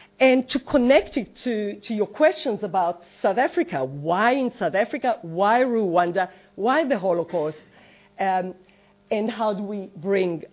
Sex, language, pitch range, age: female, English, 185-255 Hz, 40-59